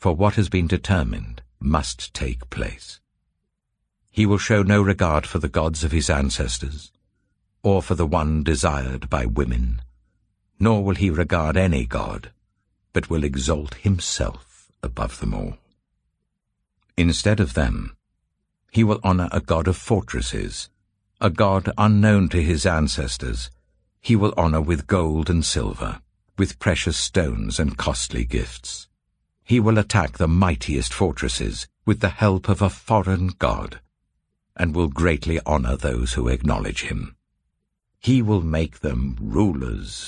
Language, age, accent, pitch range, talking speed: English, 60-79, British, 70-100 Hz, 140 wpm